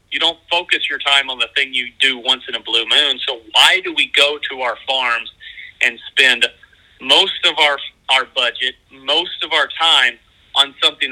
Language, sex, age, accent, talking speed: English, male, 40-59, American, 195 wpm